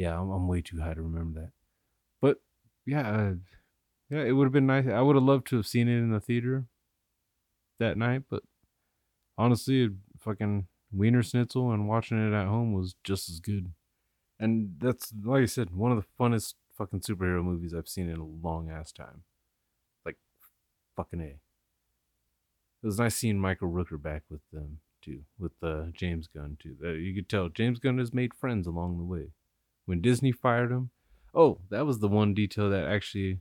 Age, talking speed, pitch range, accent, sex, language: 30-49, 190 wpm, 85-110 Hz, American, male, English